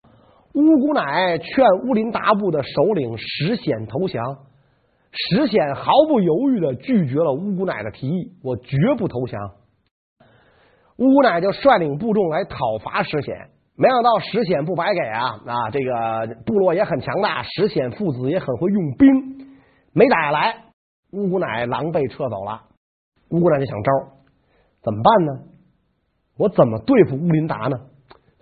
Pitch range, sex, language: 130-200 Hz, male, Chinese